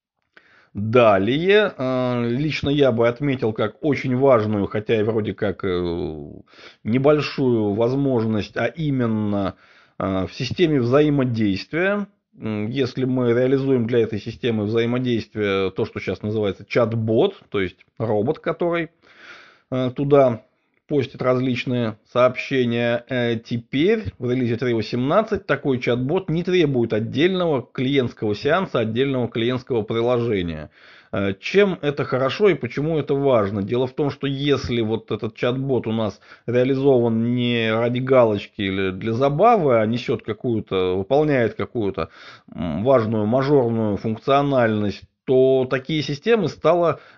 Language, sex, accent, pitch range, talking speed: Russian, male, native, 110-145 Hz, 115 wpm